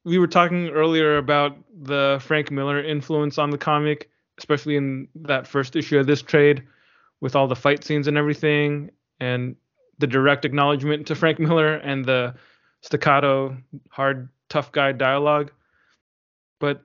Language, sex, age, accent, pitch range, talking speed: English, male, 20-39, American, 140-160 Hz, 150 wpm